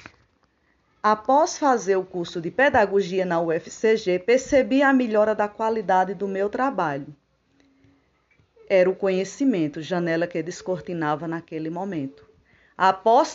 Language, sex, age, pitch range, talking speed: Portuguese, female, 20-39, 175-230 Hz, 110 wpm